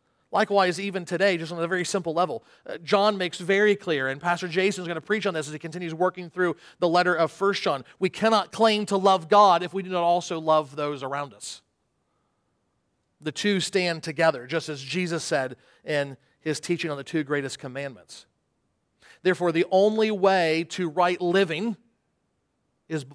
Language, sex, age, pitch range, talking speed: English, male, 40-59, 160-200 Hz, 185 wpm